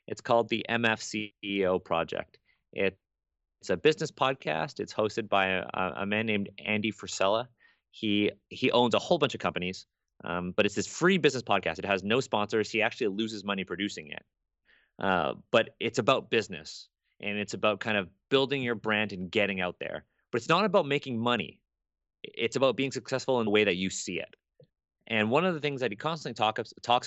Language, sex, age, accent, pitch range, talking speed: English, male, 30-49, American, 95-120 Hz, 190 wpm